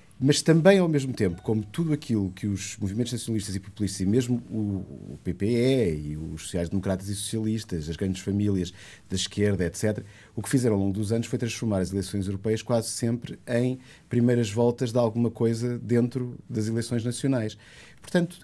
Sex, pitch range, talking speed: male, 100-125 Hz, 175 wpm